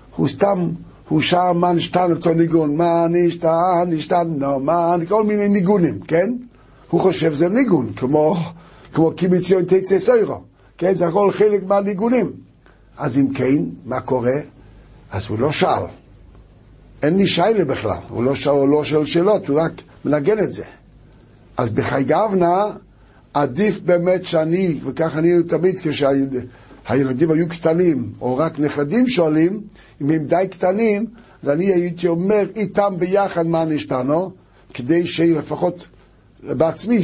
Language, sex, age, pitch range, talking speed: Hebrew, male, 60-79, 135-185 Hz, 145 wpm